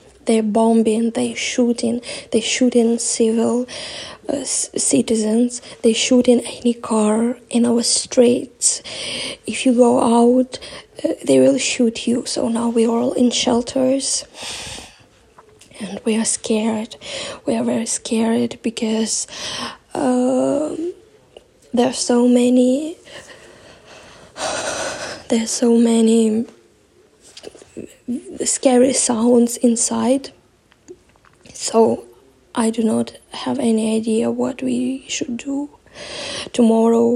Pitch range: 230-255 Hz